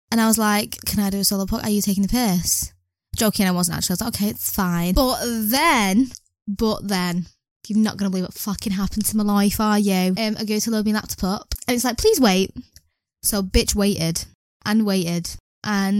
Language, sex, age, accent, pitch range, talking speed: English, female, 10-29, British, 195-235 Hz, 230 wpm